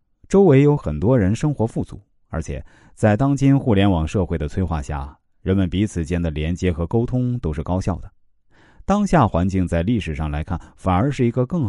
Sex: male